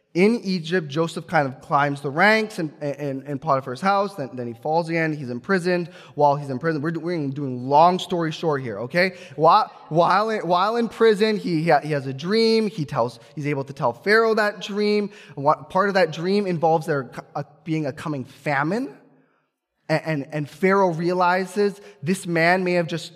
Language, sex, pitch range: English, male, 155-190 Hz